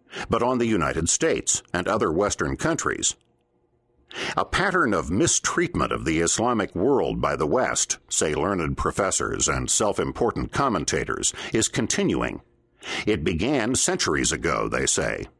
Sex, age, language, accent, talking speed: male, 60-79, English, American, 135 wpm